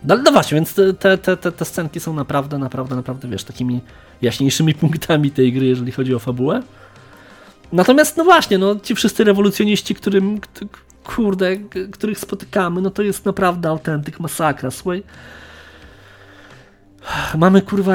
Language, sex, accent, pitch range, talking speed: Polish, male, native, 135-185 Hz, 145 wpm